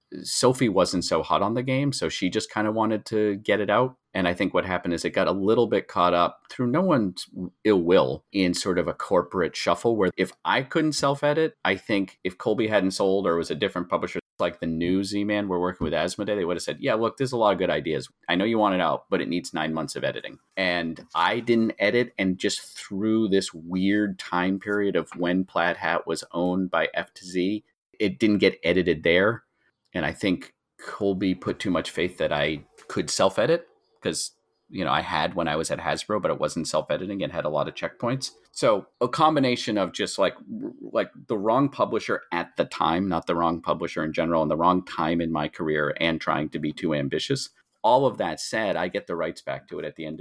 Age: 30-49